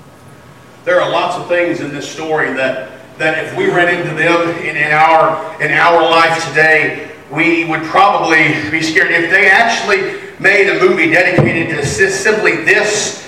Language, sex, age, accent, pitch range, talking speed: English, male, 40-59, American, 170-270 Hz, 165 wpm